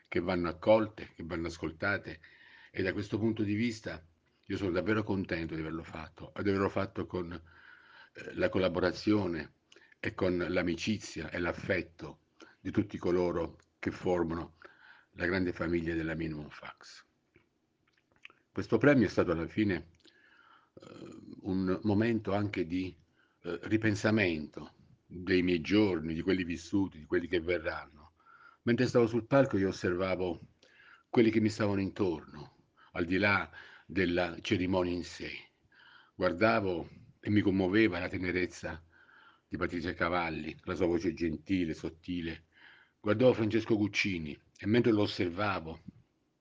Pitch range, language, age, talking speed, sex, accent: 85-105 Hz, Italian, 50-69, 135 wpm, male, native